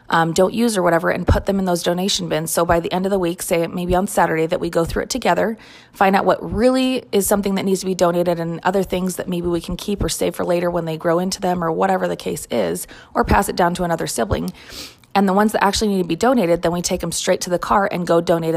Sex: female